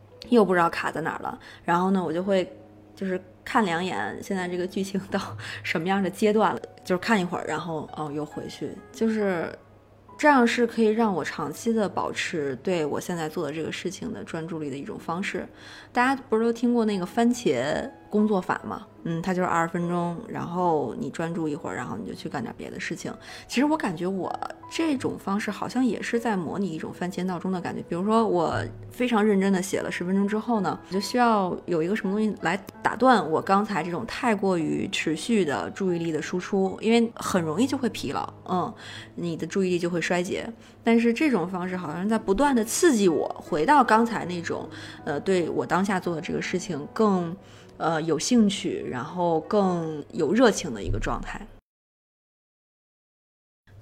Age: 20-39